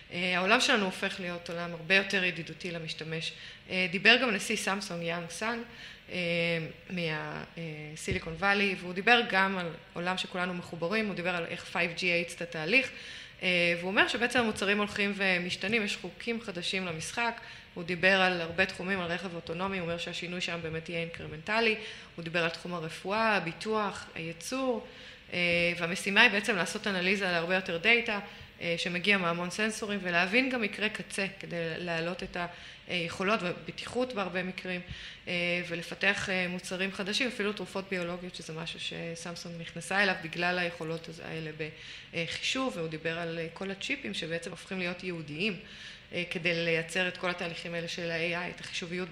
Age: 20-39